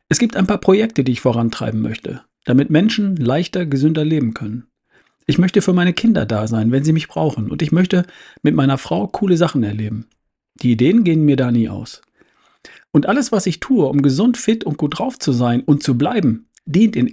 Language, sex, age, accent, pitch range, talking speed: German, male, 50-69, German, 130-175 Hz, 210 wpm